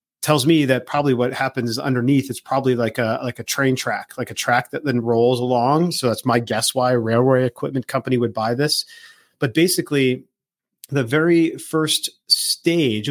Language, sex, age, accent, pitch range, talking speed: English, male, 40-59, American, 125-145 Hz, 185 wpm